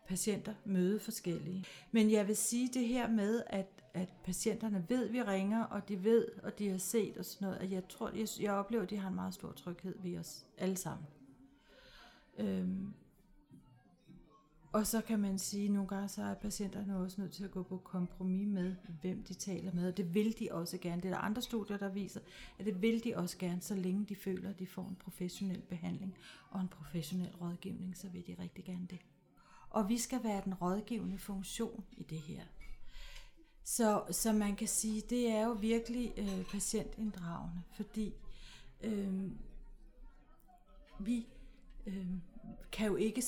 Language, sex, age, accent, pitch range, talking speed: Danish, female, 40-59, native, 185-220 Hz, 180 wpm